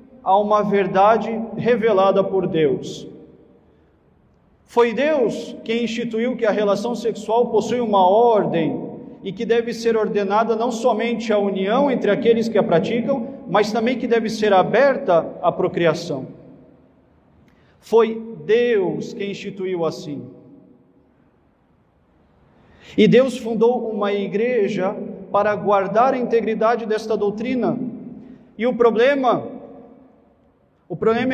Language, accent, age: Portuguese, Brazilian, 40-59